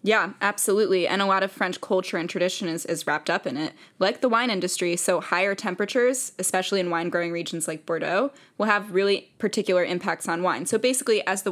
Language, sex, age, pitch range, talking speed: English, female, 10-29, 180-215 Hz, 215 wpm